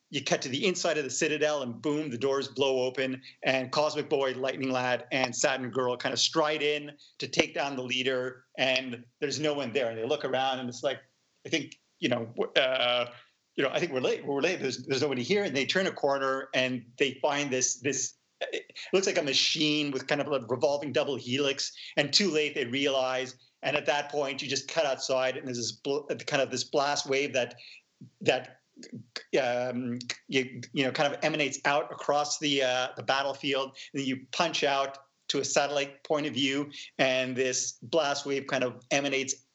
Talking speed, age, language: 210 wpm, 40-59, English